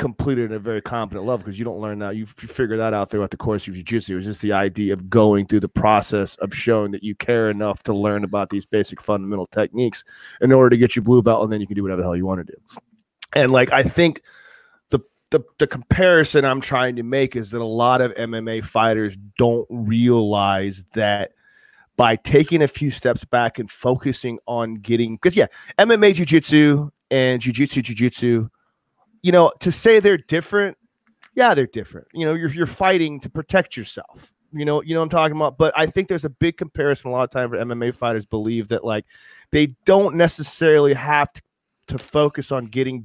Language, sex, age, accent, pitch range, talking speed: English, male, 30-49, American, 110-150 Hz, 215 wpm